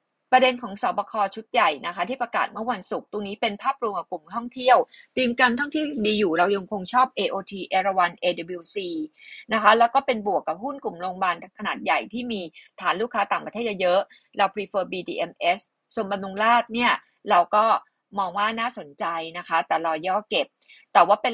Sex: female